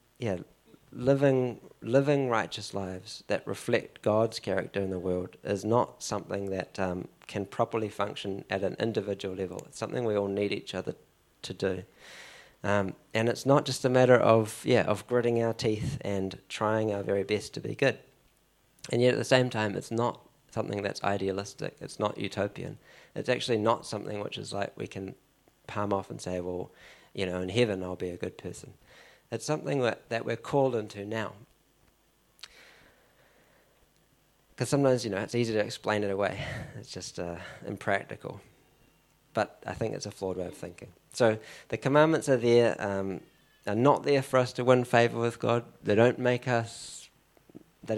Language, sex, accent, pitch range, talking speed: English, male, Australian, 100-125 Hz, 180 wpm